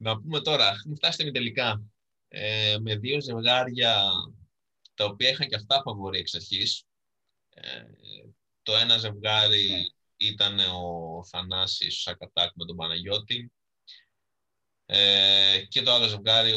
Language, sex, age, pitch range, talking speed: Greek, male, 20-39, 95-150 Hz, 110 wpm